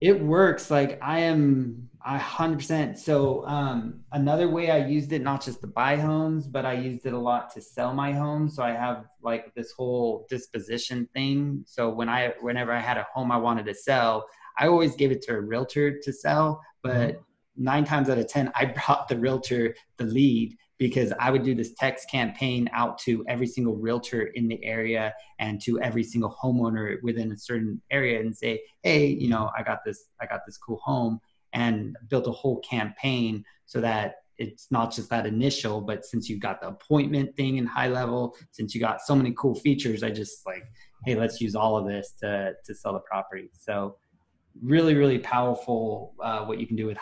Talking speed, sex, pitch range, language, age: 205 wpm, male, 115-140 Hz, English, 20-39